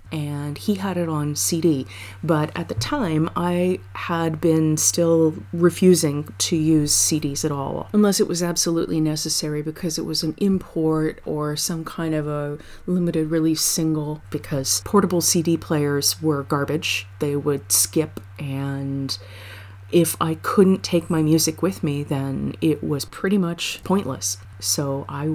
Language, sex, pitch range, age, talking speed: English, female, 135-175 Hz, 30-49, 150 wpm